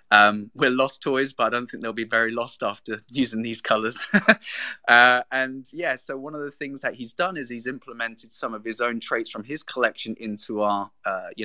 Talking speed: 220 wpm